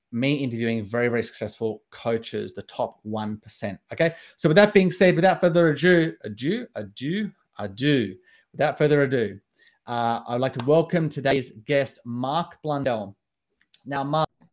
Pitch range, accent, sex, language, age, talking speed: 115-145 Hz, Australian, male, English, 30-49, 145 wpm